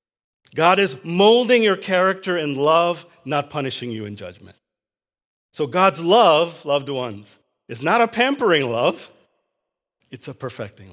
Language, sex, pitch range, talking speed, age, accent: English, male, 120-175 Hz, 135 wpm, 40-59, American